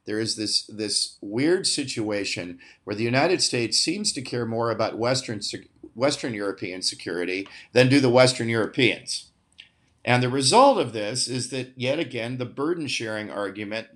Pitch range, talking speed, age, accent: 110-140 Hz, 160 wpm, 50-69, American